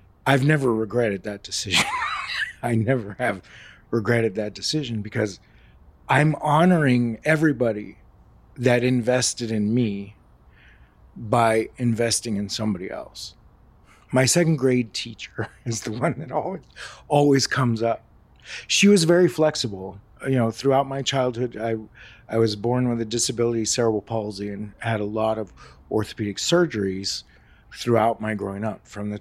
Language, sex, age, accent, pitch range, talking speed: English, male, 30-49, American, 105-130 Hz, 140 wpm